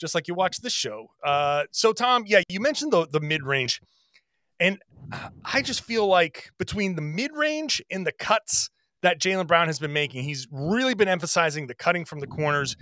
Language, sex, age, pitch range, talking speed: English, male, 30-49, 150-200 Hz, 190 wpm